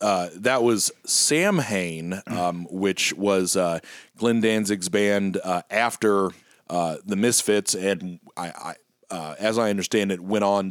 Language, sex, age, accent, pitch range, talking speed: English, male, 30-49, American, 95-115 Hz, 150 wpm